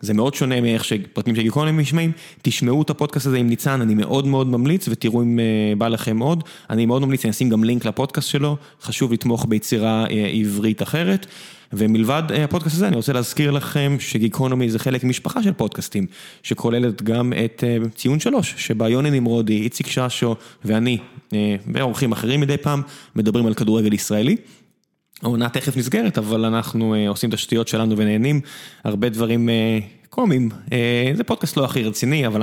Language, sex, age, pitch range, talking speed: Hebrew, male, 20-39, 110-145 Hz, 170 wpm